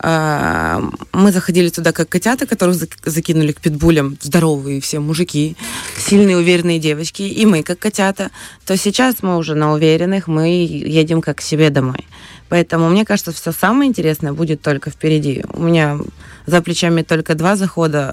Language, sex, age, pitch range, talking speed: Russian, female, 20-39, 150-185 Hz, 155 wpm